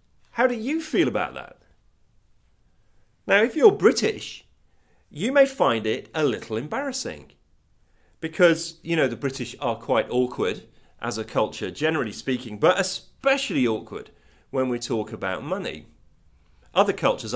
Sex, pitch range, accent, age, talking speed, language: male, 115-180 Hz, British, 40-59, 140 wpm, English